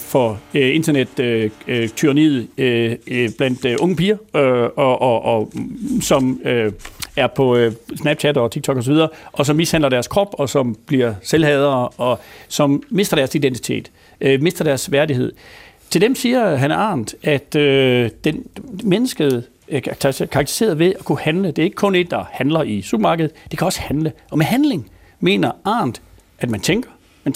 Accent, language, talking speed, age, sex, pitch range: native, Danish, 150 wpm, 60-79, male, 135-190 Hz